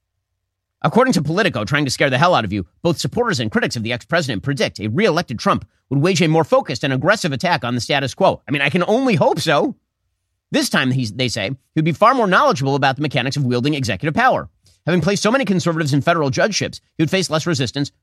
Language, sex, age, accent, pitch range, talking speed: English, male, 30-49, American, 110-175 Hz, 235 wpm